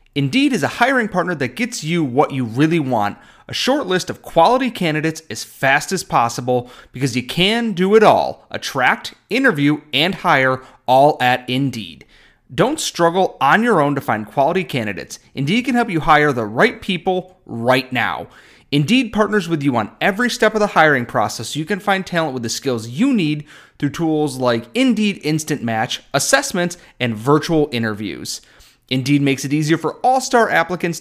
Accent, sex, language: American, male, English